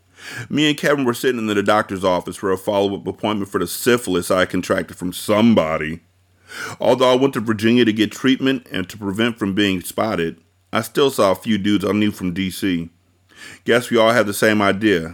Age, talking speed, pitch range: 30-49, 205 wpm, 90-110 Hz